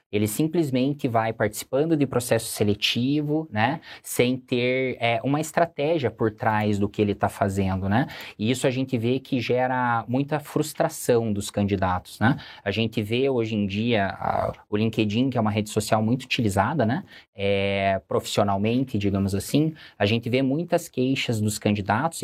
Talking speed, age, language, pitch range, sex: 155 wpm, 20-39, Portuguese, 105-135 Hz, male